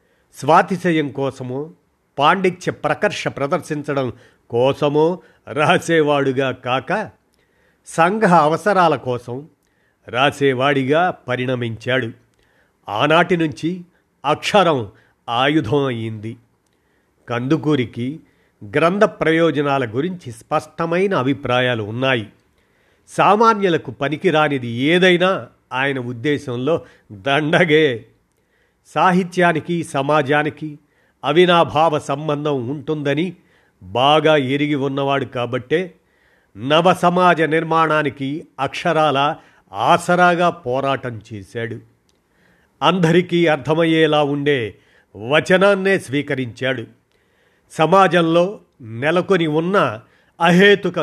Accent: native